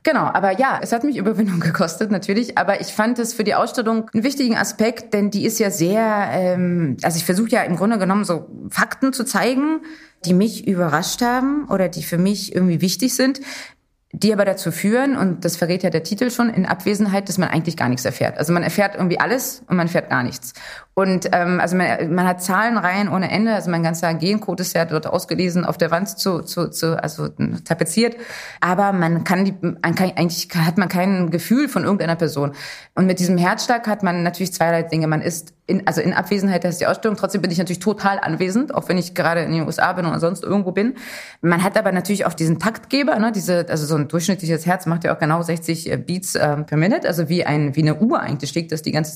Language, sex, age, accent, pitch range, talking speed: German, female, 30-49, German, 170-215 Hz, 225 wpm